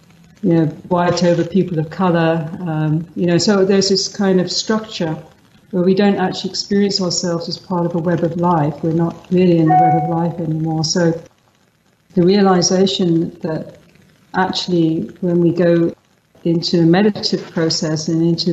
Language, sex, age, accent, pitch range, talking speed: English, female, 50-69, British, 165-185 Hz, 170 wpm